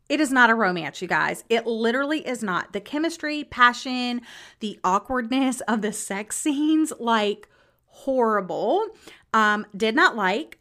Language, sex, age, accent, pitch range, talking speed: English, female, 30-49, American, 205-285 Hz, 145 wpm